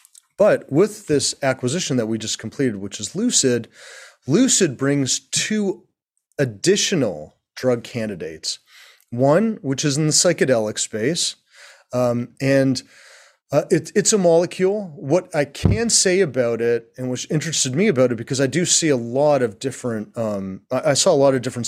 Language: English